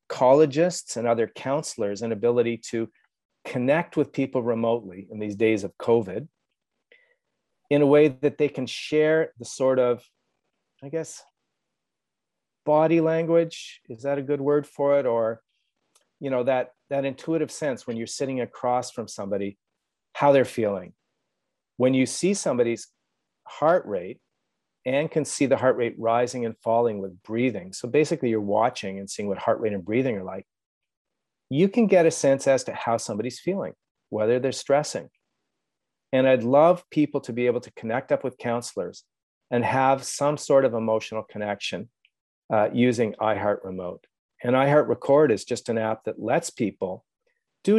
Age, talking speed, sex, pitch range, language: 40-59, 165 wpm, male, 115-145 Hz, English